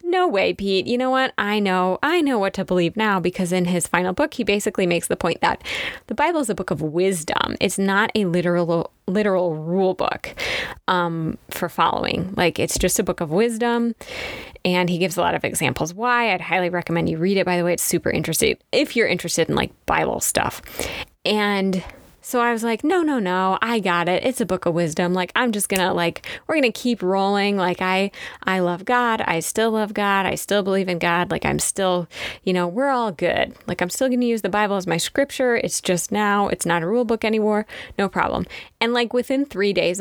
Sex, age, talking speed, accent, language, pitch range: female, 20-39, 230 wpm, American, English, 180-230 Hz